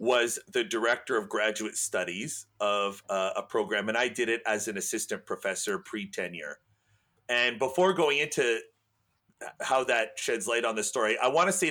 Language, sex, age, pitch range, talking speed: English, male, 40-59, 115-165 Hz, 170 wpm